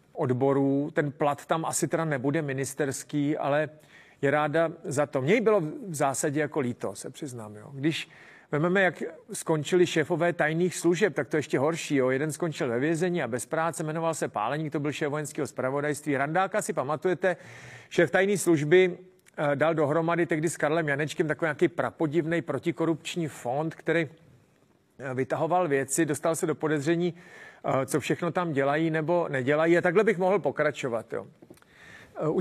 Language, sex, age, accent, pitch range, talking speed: Czech, male, 40-59, native, 140-170 Hz, 160 wpm